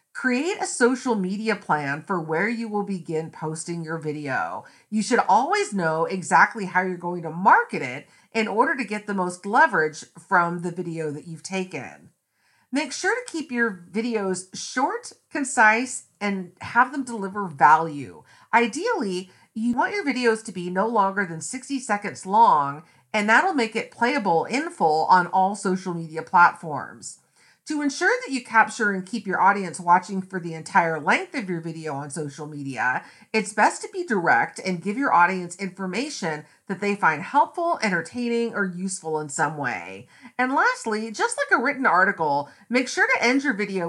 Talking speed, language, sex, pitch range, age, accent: 175 wpm, English, female, 170-255 Hz, 40-59, American